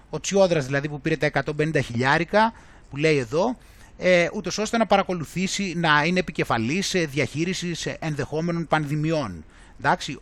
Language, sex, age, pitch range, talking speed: Greek, male, 30-49, 140-190 Hz, 135 wpm